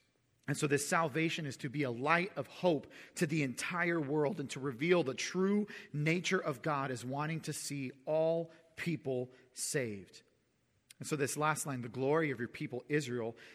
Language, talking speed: English, 180 wpm